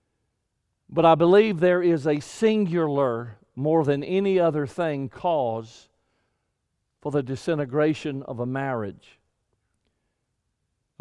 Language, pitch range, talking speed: English, 125-175 Hz, 110 wpm